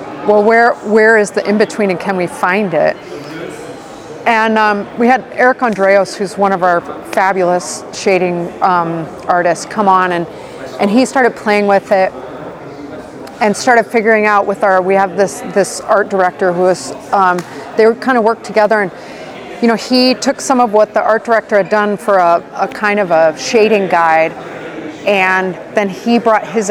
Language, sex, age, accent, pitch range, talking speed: Italian, female, 30-49, American, 185-225 Hz, 180 wpm